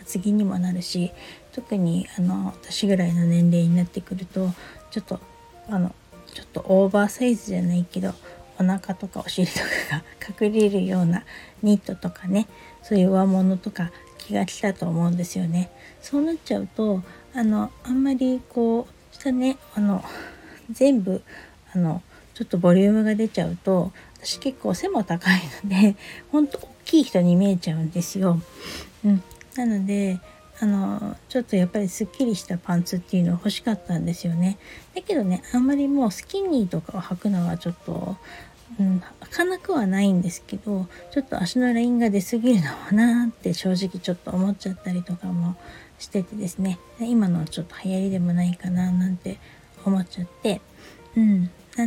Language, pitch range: Japanese, 180-215 Hz